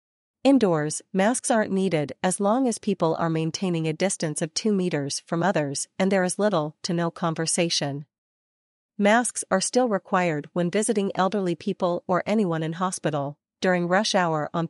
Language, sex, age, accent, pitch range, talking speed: English, female, 40-59, American, 160-195 Hz, 165 wpm